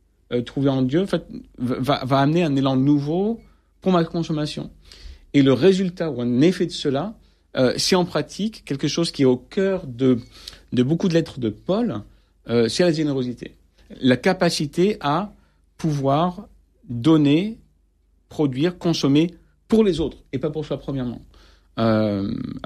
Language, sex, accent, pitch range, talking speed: French, male, French, 130-180 Hz, 150 wpm